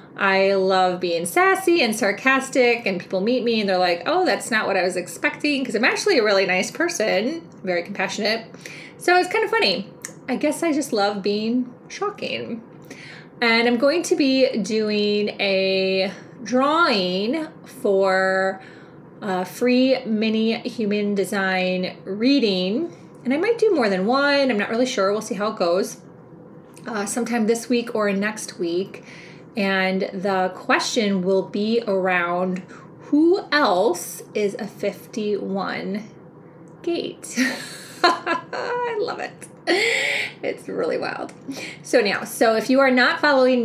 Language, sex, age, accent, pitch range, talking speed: English, female, 20-39, American, 190-260 Hz, 145 wpm